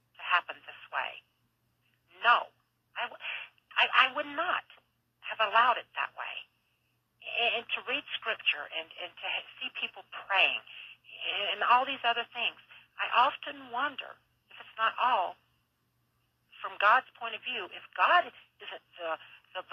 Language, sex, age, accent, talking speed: English, female, 50-69, American, 135 wpm